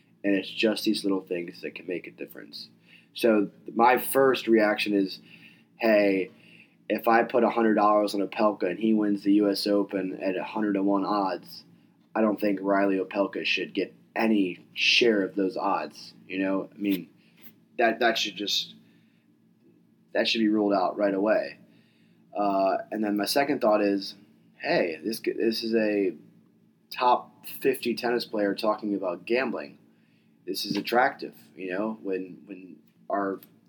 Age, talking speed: 20-39, 155 wpm